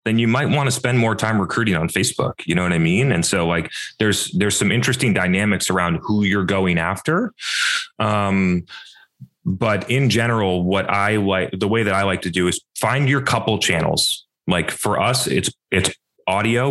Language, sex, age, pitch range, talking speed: English, male, 30-49, 90-110 Hz, 195 wpm